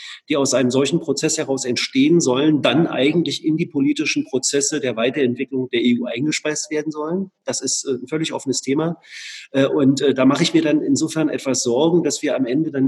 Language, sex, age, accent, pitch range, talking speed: English, male, 40-59, German, 135-185 Hz, 190 wpm